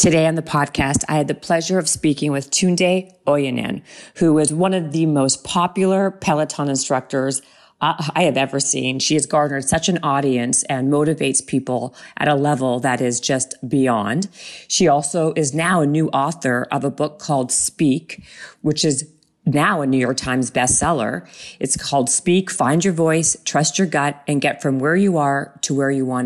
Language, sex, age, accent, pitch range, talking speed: English, female, 40-59, American, 135-160 Hz, 185 wpm